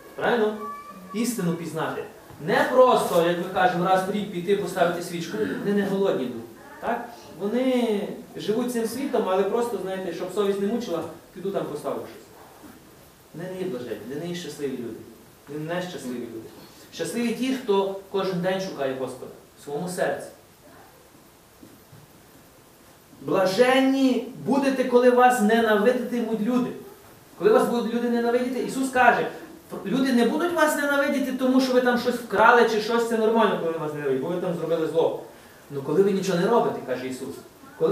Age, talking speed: 30-49, 165 wpm